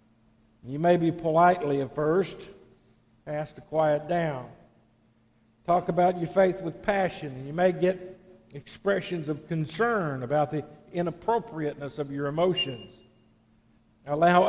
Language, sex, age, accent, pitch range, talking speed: English, male, 60-79, American, 130-185 Hz, 120 wpm